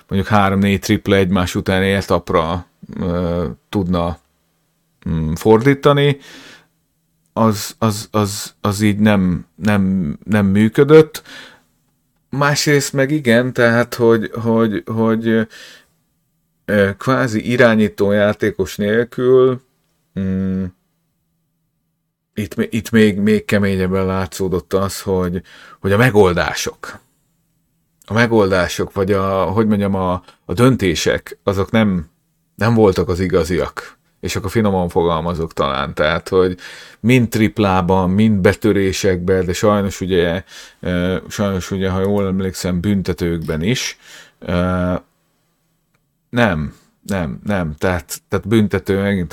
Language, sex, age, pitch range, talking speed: Hungarian, male, 30-49, 95-115 Hz, 105 wpm